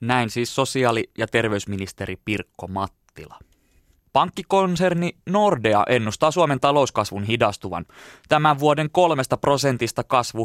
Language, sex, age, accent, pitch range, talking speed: Finnish, male, 20-39, native, 110-145 Hz, 105 wpm